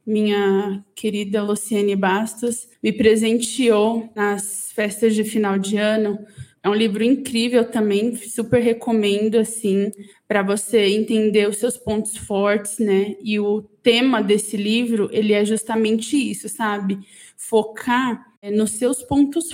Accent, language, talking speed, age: Brazilian, Portuguese, 130 wpm, 20-39